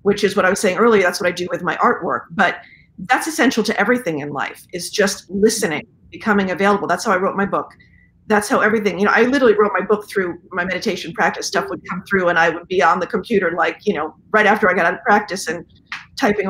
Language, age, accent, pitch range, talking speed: English, 40-59, American, 185-225 Hz, 250 wpm